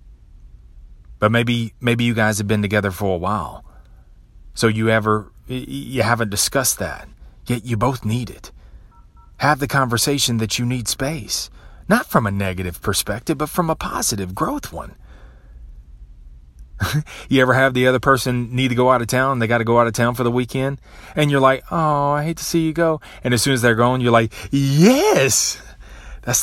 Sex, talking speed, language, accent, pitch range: male, 190 wpm, English, American, 90-130 Hz